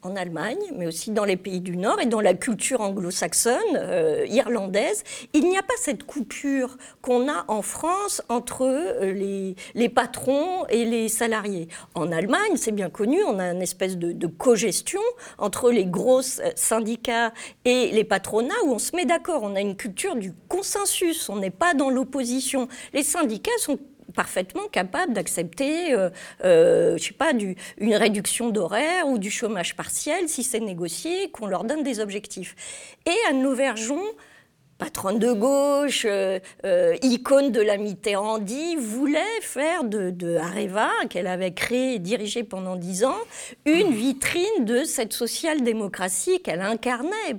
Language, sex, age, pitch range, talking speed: French, female, 50-69, 195-280 Hz, 160 wpm